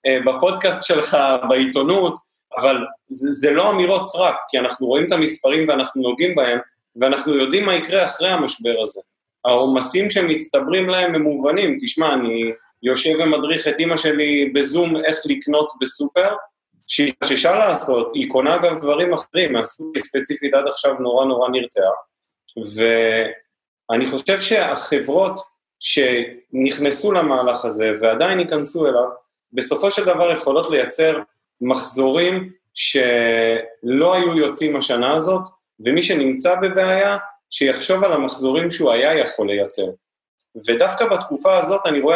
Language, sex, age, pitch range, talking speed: Hebrew, male, 30-49, 130-185 Hz, 125 wpm